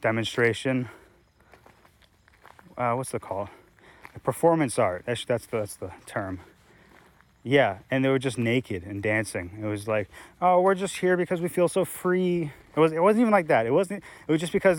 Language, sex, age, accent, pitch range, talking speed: English, male, 20-39, American, 105-135 Hz, 190 wpm